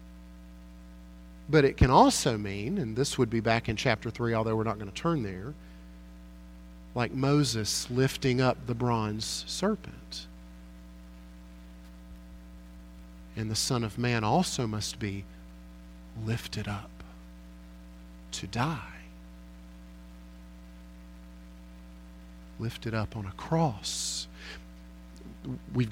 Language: English